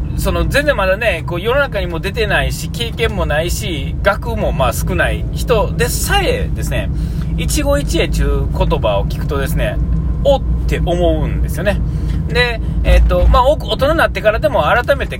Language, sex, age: Japanese, male, 40-59